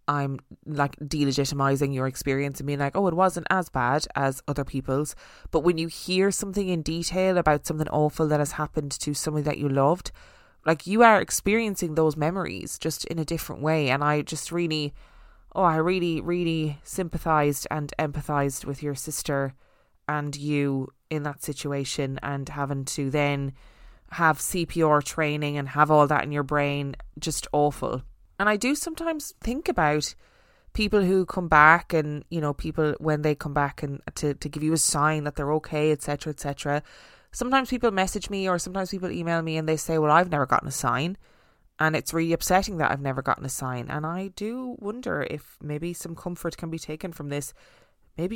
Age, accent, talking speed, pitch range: 20-39, Irish, 195 wpm, 145-175 Hz